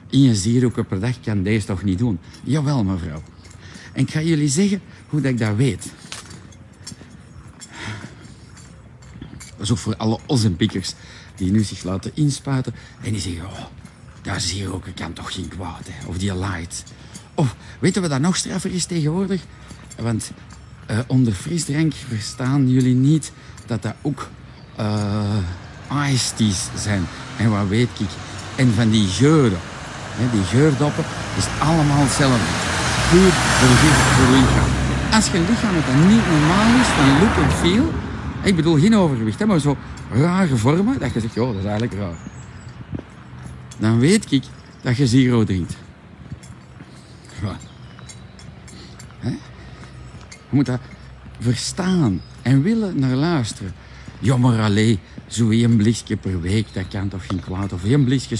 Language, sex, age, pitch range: Dutch, male, 50-69, 100-140 Hz